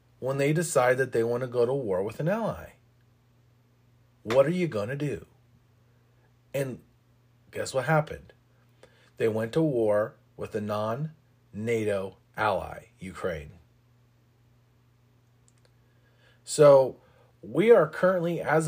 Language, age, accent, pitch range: English, 40-59, American, 115-135 Hz